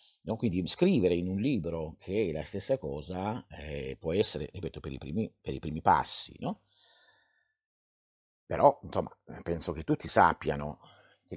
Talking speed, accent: 160 wpm, native